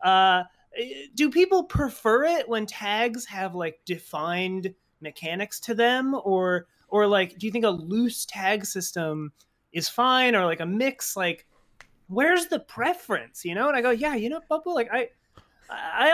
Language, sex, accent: English, male, American